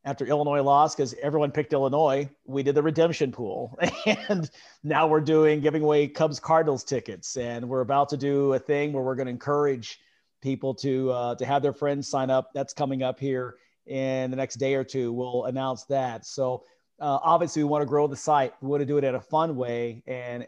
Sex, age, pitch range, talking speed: male, 40-59, 125-145 Hz, 215 wpm